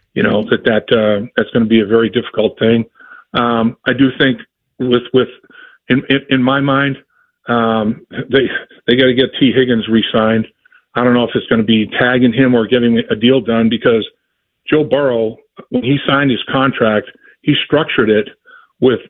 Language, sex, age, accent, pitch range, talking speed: English, male, 50-69, American, 115-135 Hz, 190 wpm